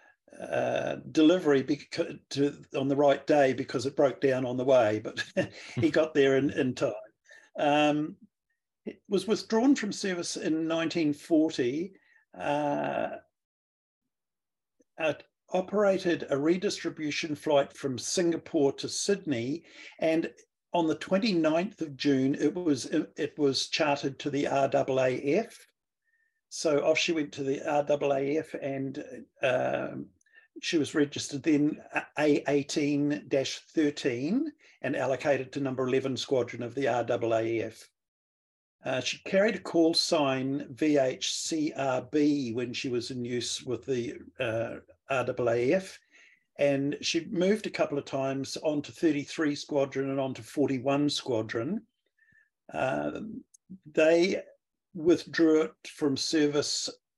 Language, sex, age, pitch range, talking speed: English, male, 50-69, 135-165 Hz, 120 wpm